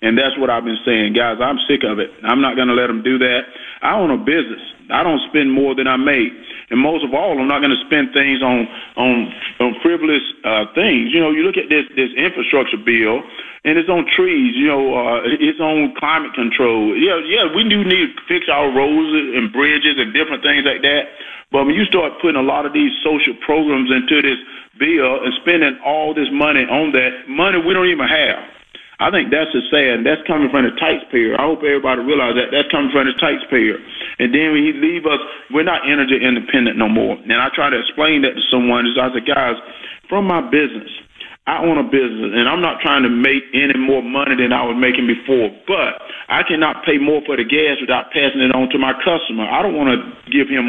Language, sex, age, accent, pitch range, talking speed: English, male, 30-49, American, 125-155 Hz, 230 wpm